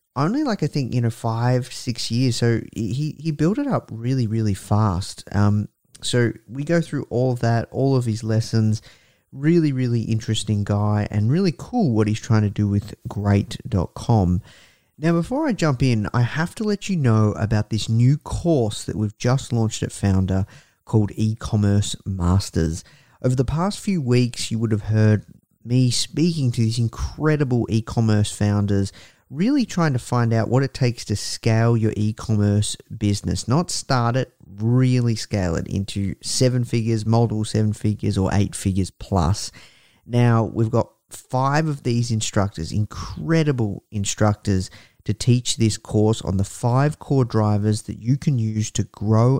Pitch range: 105-130 Hz